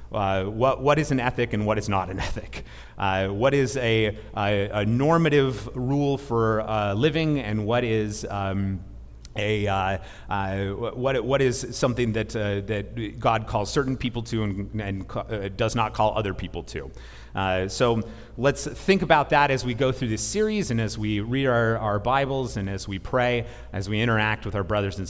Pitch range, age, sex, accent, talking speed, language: 95-115 Hz, 30-49, male, American, 195 wpm, English